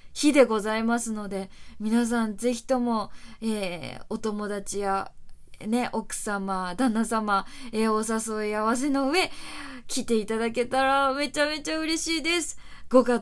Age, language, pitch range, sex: 20-39, Japanese, 210-275 Hz, female